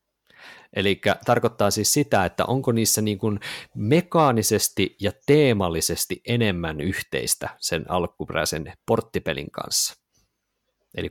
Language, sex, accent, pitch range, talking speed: Finnish, male, native, 100-140 Hz, 105 wpm